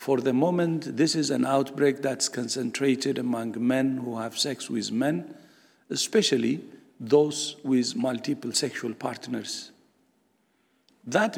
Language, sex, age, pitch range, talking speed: Persian, male, 60-79, 185-245 Hz, 120 wpm